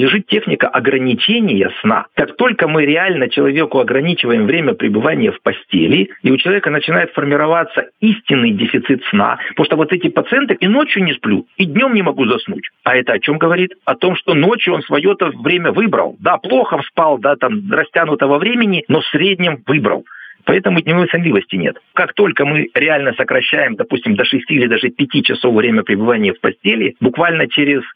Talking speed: 175 wpm